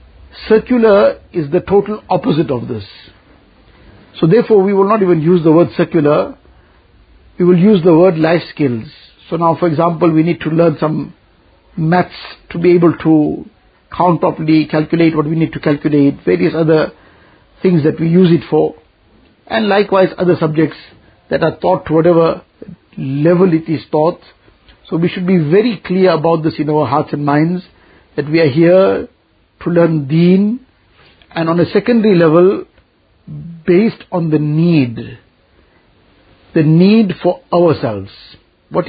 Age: 50-69